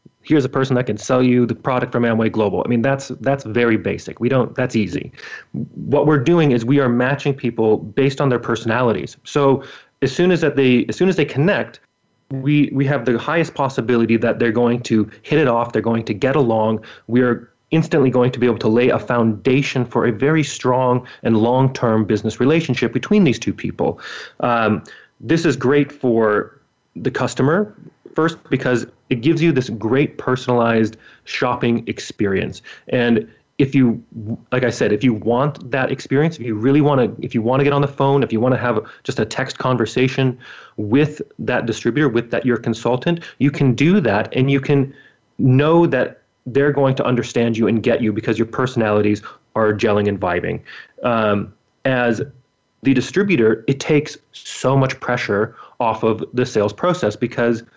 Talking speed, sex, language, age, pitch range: 190 wpm, male, English, 30-49, 115-140 Hz